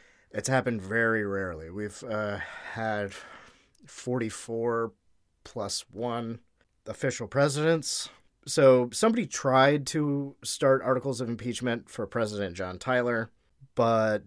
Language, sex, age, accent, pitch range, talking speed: English, male, 30-49, American, 95-125 Hz, 105 wpm